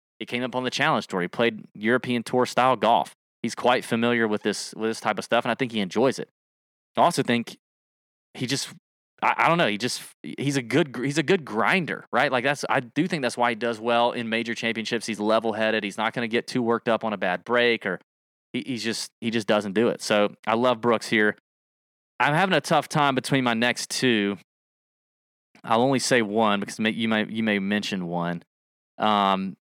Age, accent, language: 20-39, American, English